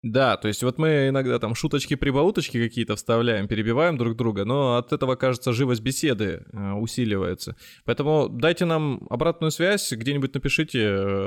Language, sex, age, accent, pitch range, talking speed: Russian, male, 20-39, native, 105-135 Hz, 145 wpm